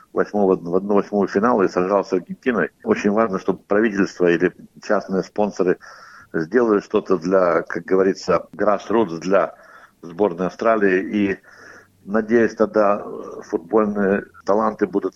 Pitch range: 95-115 Hz